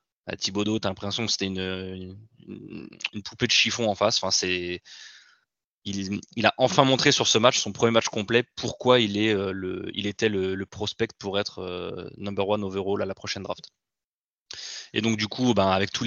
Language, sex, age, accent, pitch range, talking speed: French, male, 20-39, French, 100-115 Hz, 200 wpm